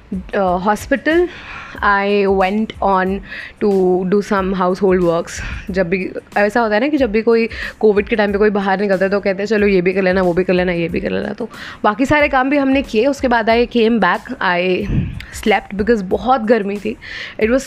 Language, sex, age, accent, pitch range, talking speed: English, female, 20-39, Indian, 190-235 Hz, 110 wpm